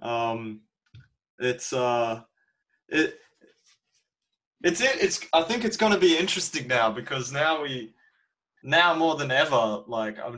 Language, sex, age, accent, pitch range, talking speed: English, male, 20-39, Australian, 110-130 Hz, 135 wpm